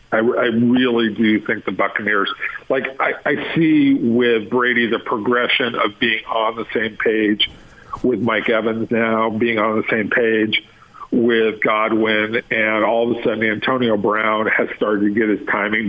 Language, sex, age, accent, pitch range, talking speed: English, male, 50-69, American, 110-125 Hz, 170 wpm